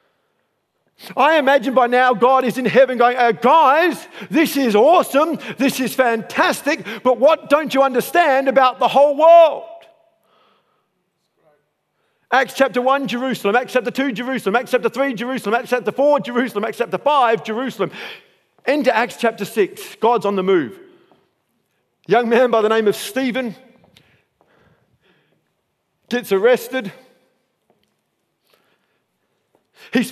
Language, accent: English, British